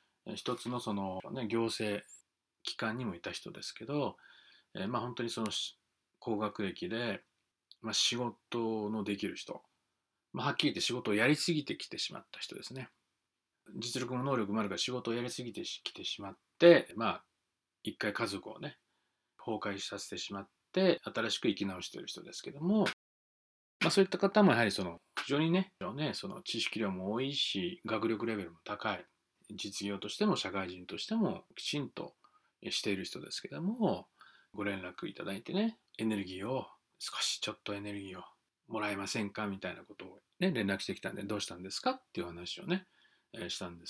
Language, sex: Japanese, male